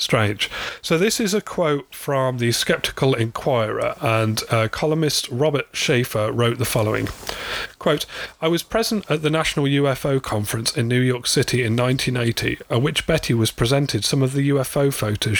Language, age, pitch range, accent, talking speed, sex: English, 30-49, 115-140 Hz, British, 170 wpm, male